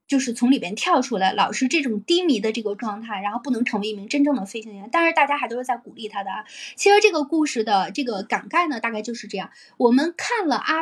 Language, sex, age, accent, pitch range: Chinese, female, 20-39, native, 215-285 Hz